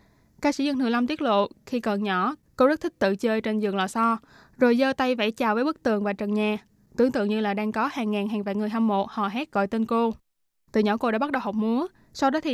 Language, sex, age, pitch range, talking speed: Vietnamese, female, 20-39, 210-250 Hz, 280 wpm